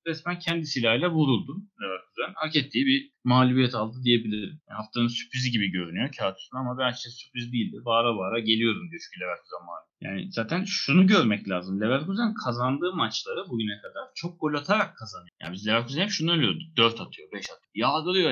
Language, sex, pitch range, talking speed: Turkish, male, 120-170 Hz, 175 wpm